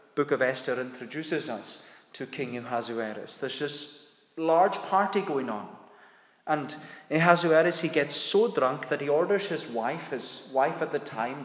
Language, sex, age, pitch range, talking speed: English, male, 30-49, 120-155 Hz, 155 wpm